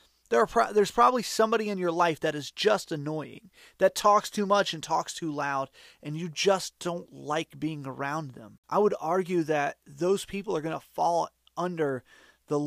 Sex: male